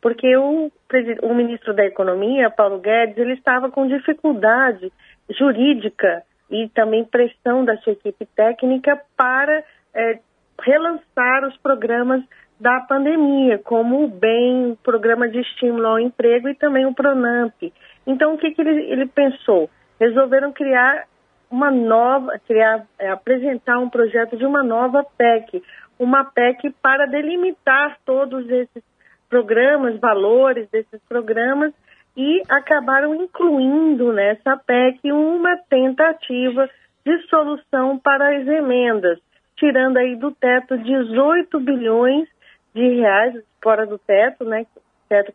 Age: 40-59